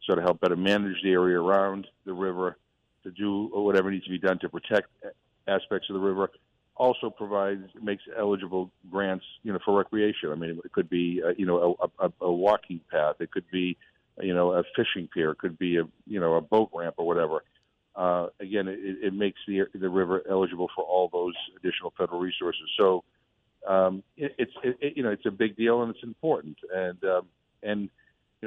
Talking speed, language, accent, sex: 200 wpm, English, American, male